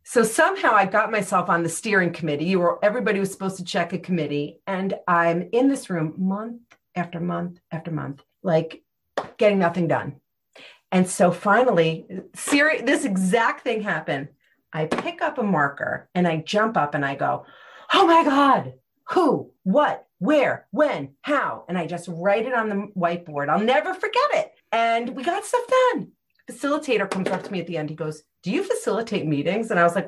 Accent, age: American, 40-59